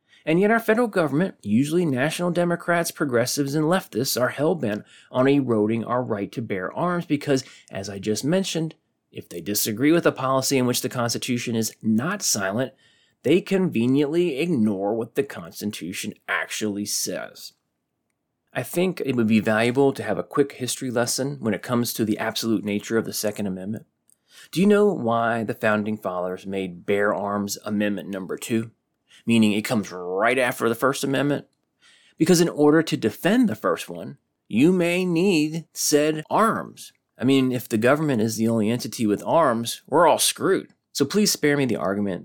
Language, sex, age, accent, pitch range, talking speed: English, male, 30-49, American, 105-150 Hz, 175 wpm